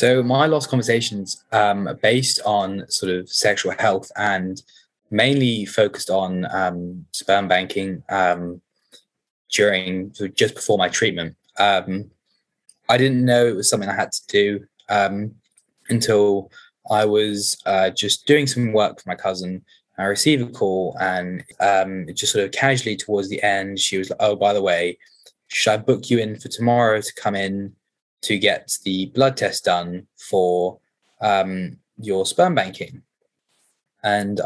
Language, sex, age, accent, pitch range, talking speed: English, male, 20-39, British, 95-120 Hz, 155 wpm